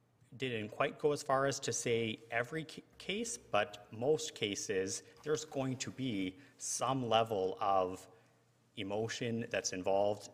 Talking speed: 135 wpm